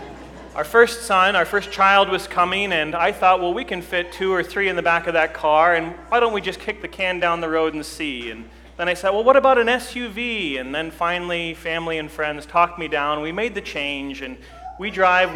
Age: 30-49